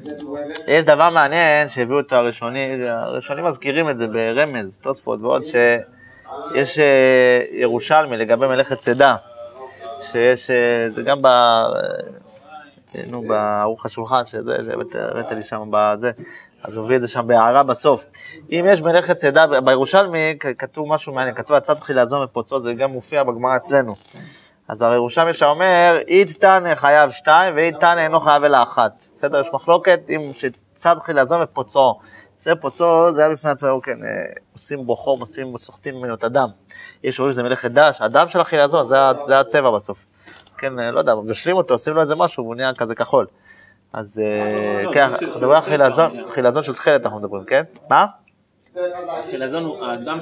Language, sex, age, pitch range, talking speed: Hebrew, male, 20-39, 120-155 Hz, 155 wpm